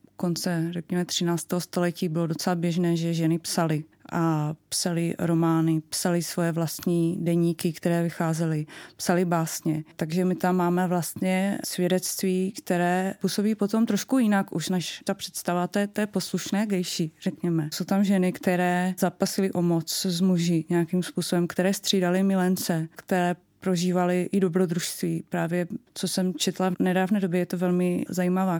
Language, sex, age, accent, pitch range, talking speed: Czech, female, 30-49, native, 175-190 Hz, 145 wpm